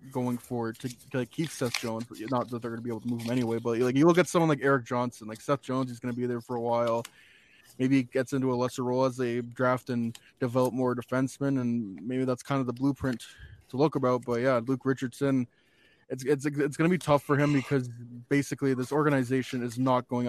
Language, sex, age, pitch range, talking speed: English, male, 20-39, 120-135 Hz, 240 wpm